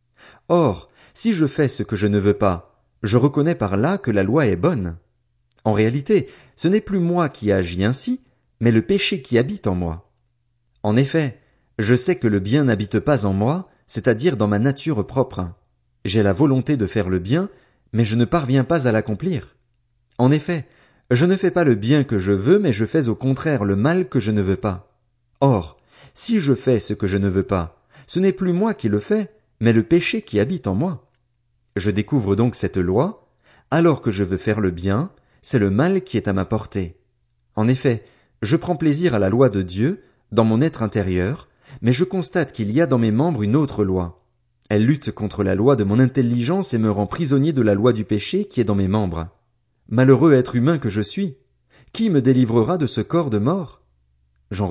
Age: 40-59